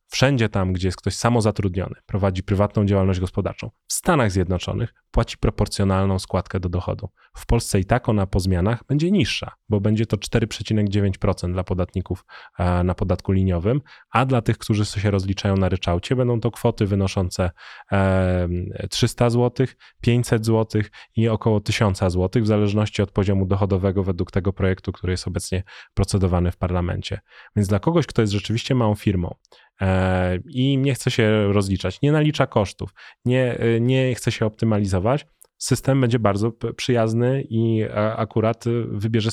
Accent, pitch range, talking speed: native, 95-115 Hz, 150 wpm